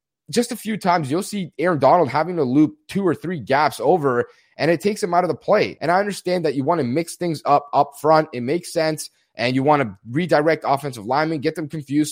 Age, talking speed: 30-49, 245 wpm